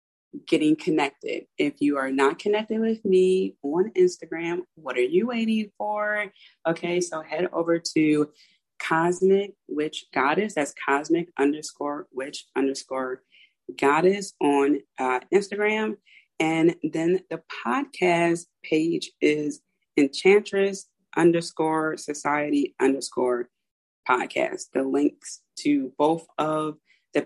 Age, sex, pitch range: 30-49, female, 140-210 Hz